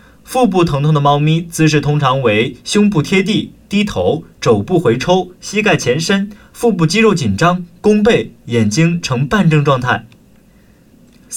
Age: 20-39